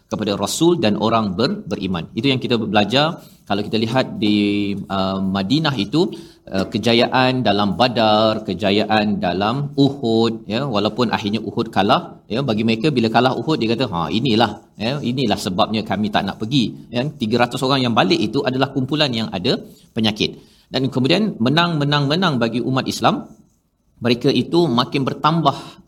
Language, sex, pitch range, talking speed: Malayalam, male, 110-140 Hz, 160 wpm